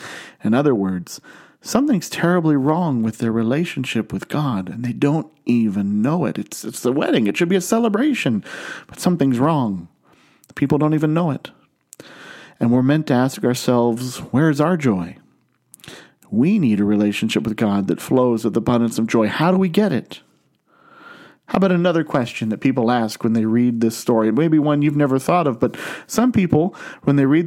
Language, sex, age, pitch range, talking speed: English, male, 40-59, 120-170 Hz, 190 wpm